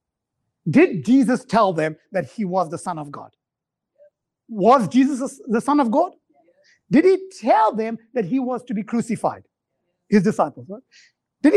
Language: English